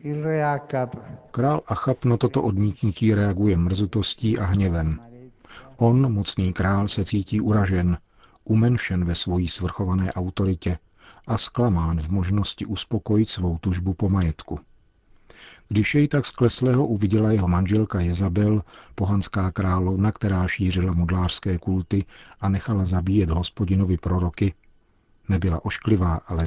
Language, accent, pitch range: Czech, native, 90-110 Hz